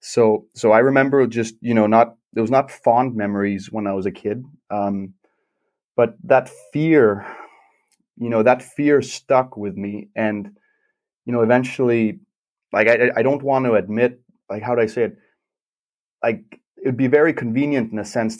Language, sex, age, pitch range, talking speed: English, male, 30-49, 105-125 Hz, 180 wpm